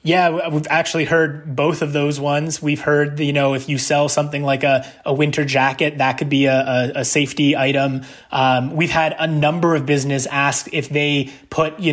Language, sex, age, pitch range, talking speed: English, male, 20-39, 145-175 Hz, 200 wpm